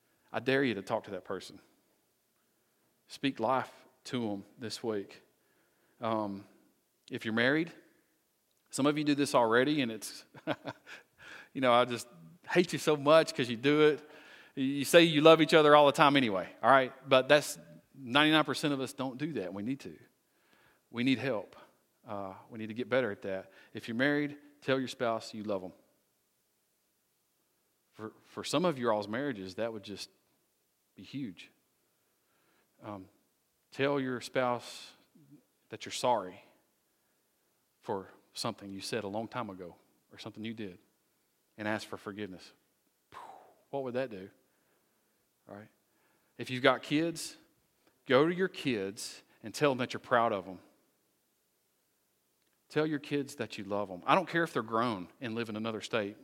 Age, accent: 40-59, American